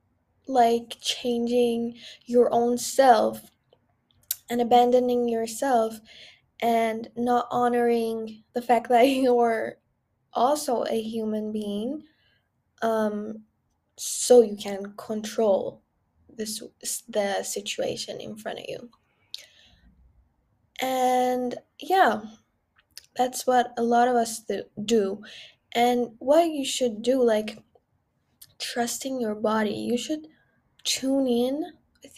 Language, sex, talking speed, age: English, female, 100 wpm, 10-29